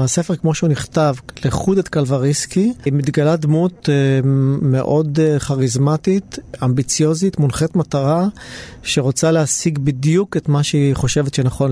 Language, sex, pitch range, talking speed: Hebrew, male, 130-155 Hz, 120 wpm